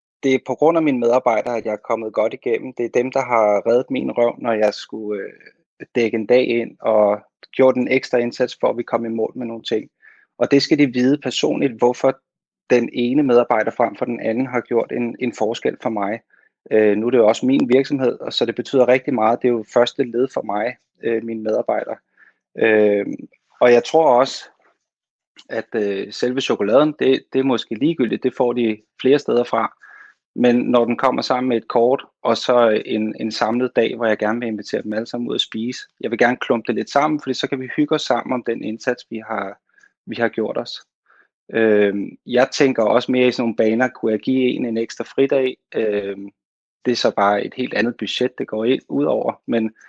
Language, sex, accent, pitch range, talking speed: Danish, male, native, 110-125 Hz, 220 wpm